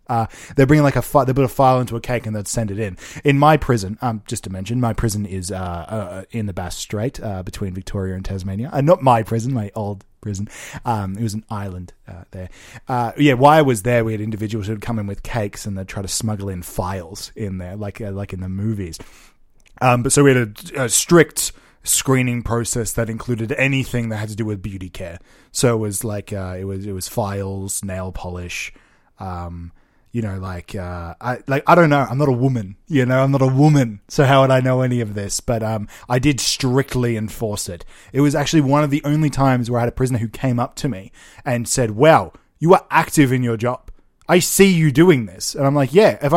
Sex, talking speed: male, 240 wpm